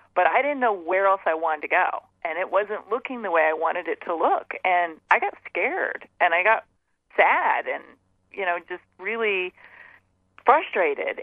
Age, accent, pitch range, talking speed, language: 30-49, American, 165-205 Hz, 185 wpm, English